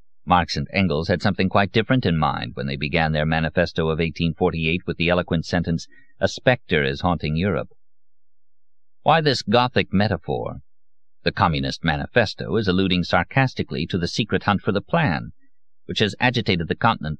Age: 50-69